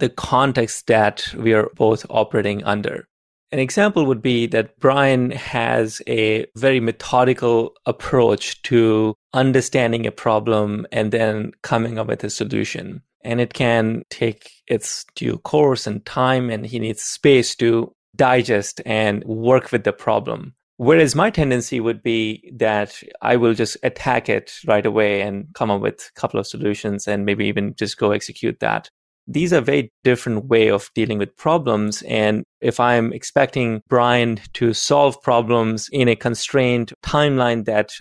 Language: English